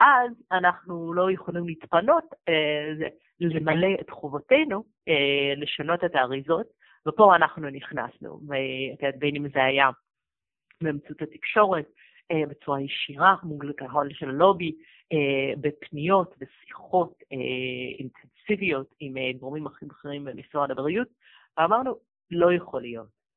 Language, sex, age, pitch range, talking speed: Hebrew, female, 30-49, 140-180 Hz, 115 wpm